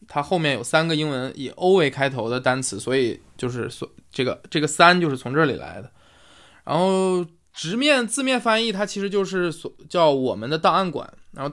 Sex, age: male, 20-39